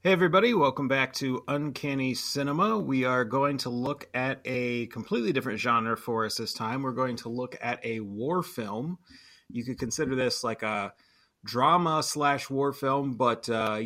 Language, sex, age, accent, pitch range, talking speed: English, male, 30-49, American, 115-140 Hz, 180 wpm